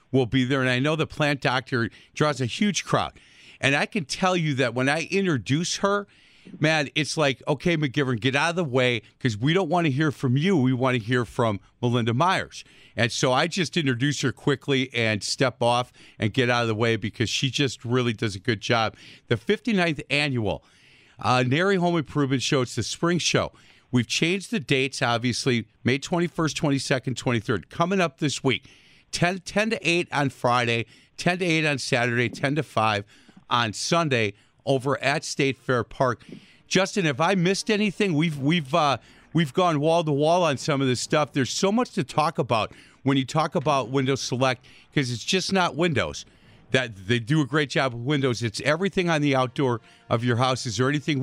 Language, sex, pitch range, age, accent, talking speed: English, male, 125-160 Hz, 50-69, American, 200 wpm